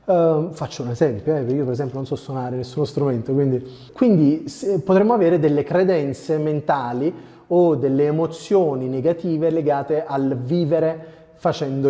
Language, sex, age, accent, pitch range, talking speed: Italian, male, 30-49, native, 125-155 Hz, 135 wpm